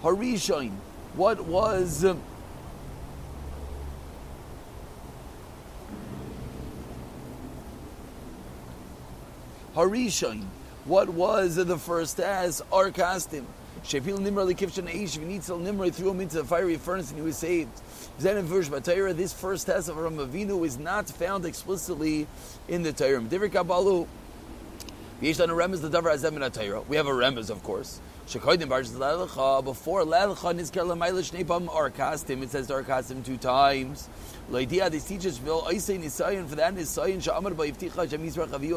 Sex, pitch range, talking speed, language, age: male, 135-180 Hz, 75 wpm, English, 30-49